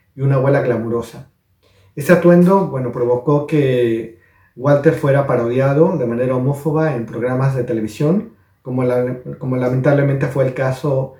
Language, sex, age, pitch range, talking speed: Spanish, male, 40-59, 120-150 Hz, 140 wpm